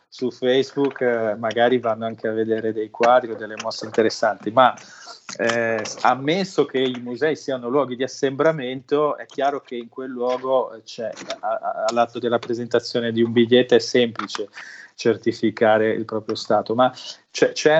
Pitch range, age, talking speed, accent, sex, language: 115-140 Hz, 20-39, 150 wpm, native, male, Italian